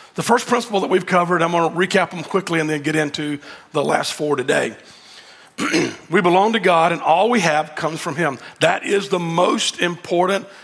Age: 40-59